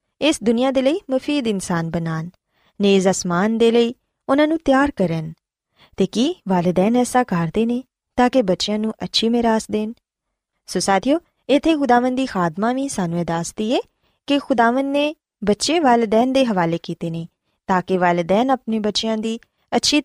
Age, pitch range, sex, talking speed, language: 20-39, 185-260 Hz, female, 160 wpm, Punjabi